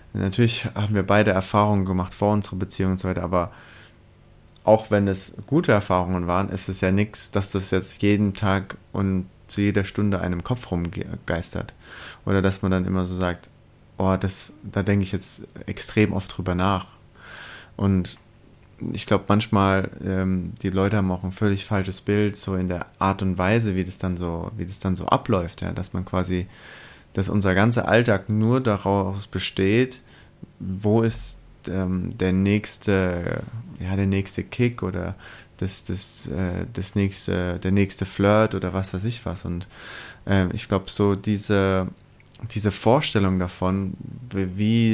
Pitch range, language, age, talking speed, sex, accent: 95-105 Hz, German, 20-39, 155 wpm, male, German